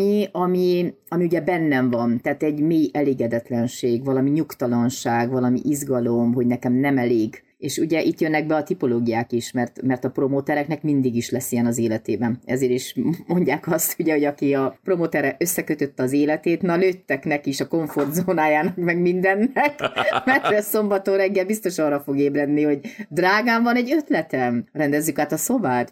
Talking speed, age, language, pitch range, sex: 165 wpm, 30-49, Hungarian, 135-185 Hz, female